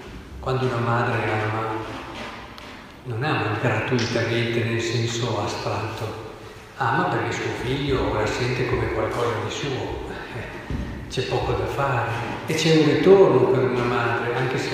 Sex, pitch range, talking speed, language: male, 120-155 Hz, 135 wpm, Italian